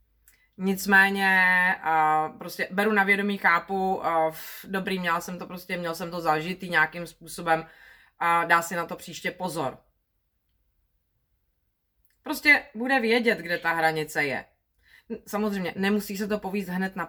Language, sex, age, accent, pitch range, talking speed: Czech, female, 30-49, native, 165-195 Hz, 135 wpm